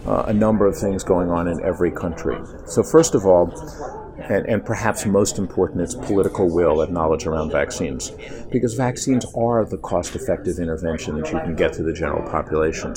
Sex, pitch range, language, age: male, 90-115 Hz, English, 50-69